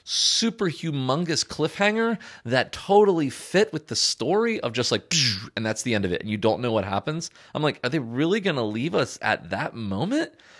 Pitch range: 105-140 Hz